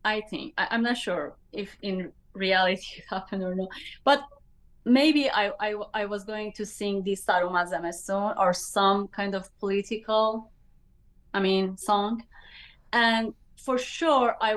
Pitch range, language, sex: 210-260 Hz, English, female